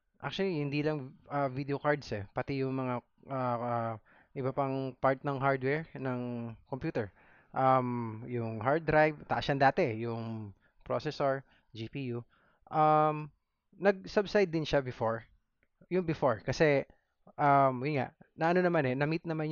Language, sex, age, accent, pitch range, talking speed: Filipino, male, 20-39, native, 125-155 Hz, 140 wpm